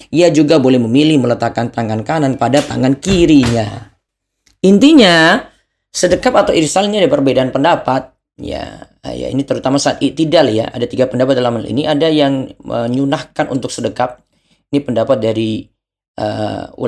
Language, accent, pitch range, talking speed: Indonesian, native, 120-150 Hz, 135 wpm